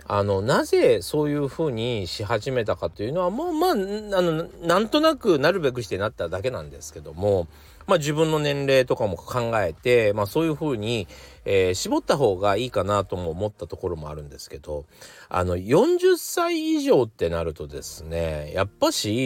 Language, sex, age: Japanese, male, 40-59